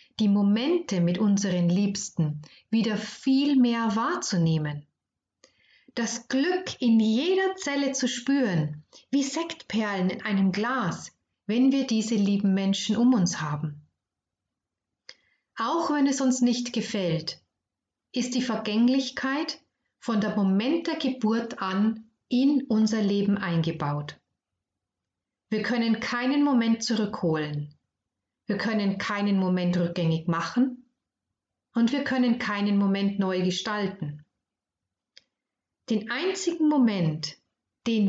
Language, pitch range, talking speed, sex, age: German, 170-245 Hz, 110 wpm, female, 40-59